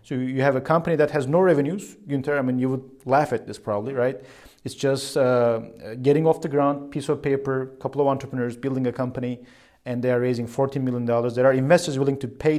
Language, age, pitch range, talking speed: English, 30-49, 120-135 Hz, 220 wpm